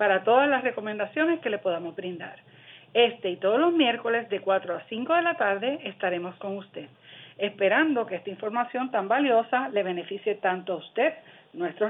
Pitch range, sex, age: 190-280 Hz, female, 50-69